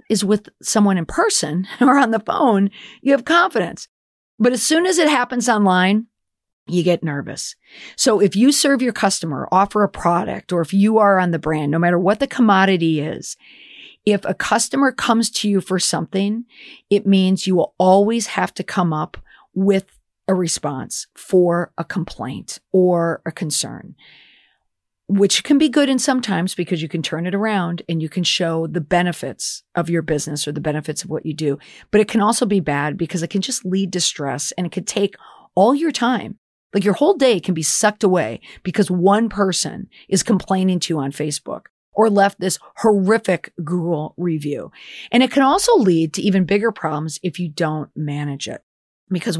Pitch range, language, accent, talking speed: 170-215 Hz, English, American, 190 wpm